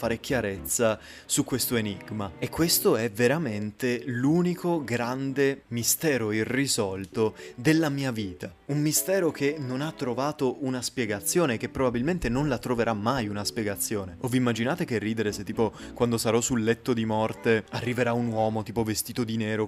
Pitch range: 110-125 Hz